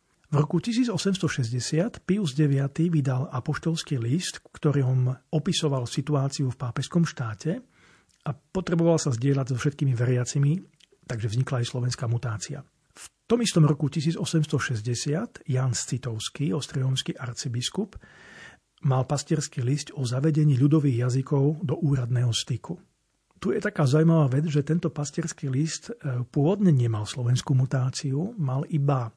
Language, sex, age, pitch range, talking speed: Slovak, male, 40-59, 130-160 Hz, 125 wpm